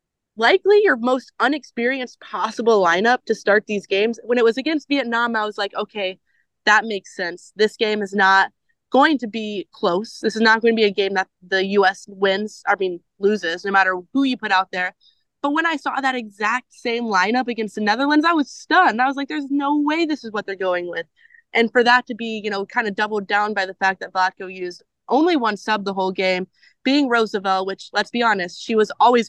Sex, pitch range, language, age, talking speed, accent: female, 190-240 Hz, English, 20-39, 225 wpm, American